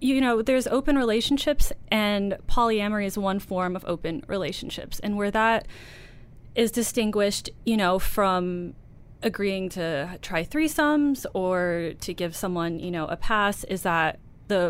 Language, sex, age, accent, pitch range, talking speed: English, female, 20-39, American, 170-205 Hz, 145 wpm